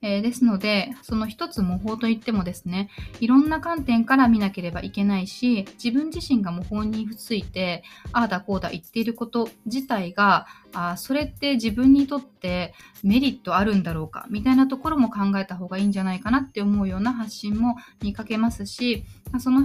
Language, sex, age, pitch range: Japanese, female, 20-39, 195-250 Hz